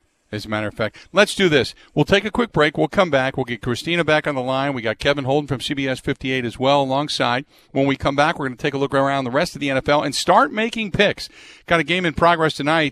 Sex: male